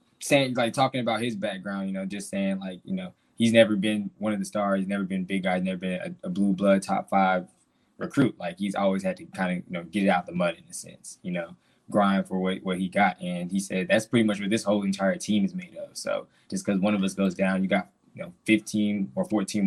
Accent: American